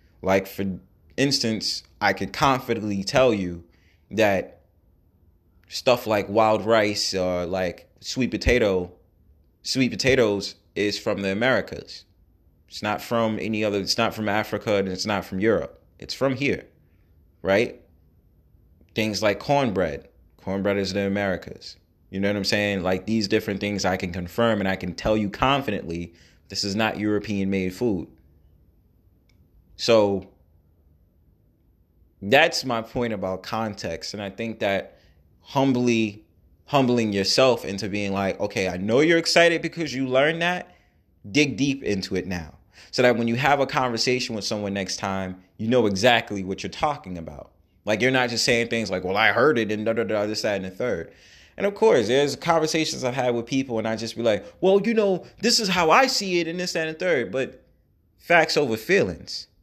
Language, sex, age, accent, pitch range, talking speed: English, male, 20-39, American, 90-120 Hz, 170 wpm